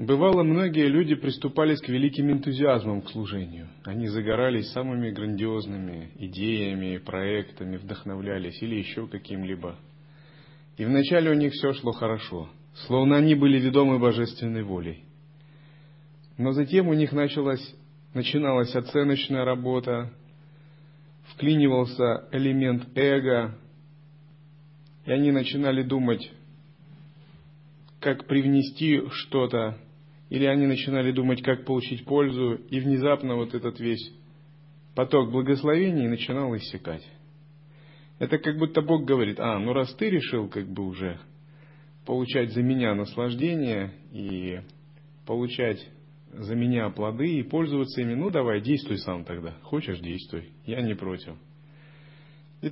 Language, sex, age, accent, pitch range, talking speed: Russian, male, 30-49, native, 115-150 Hz, 115 wpm